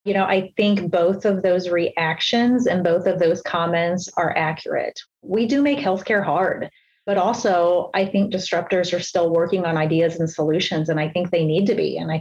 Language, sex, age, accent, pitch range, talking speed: English, female, 30-49, American, 170-190 Hz, 200 wpm